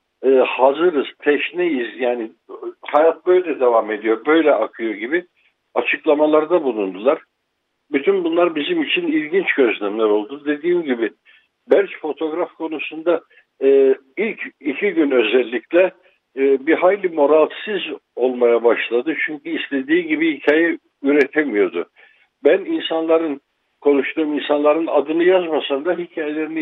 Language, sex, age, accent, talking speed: Turkish, male, 60-79, native, 110 wpm